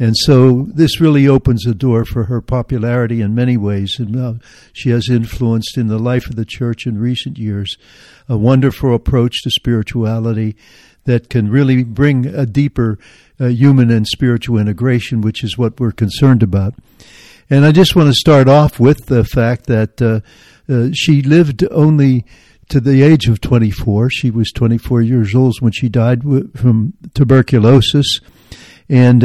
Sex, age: male, 60-79